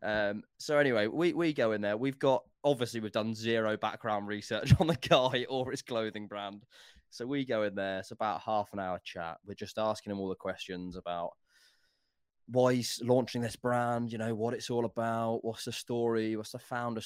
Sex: male